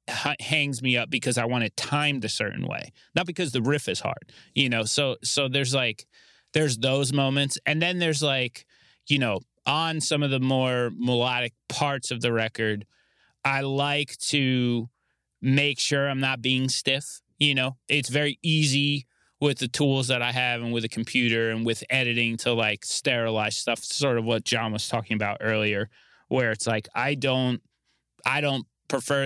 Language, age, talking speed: English, 20-39, 185 wpm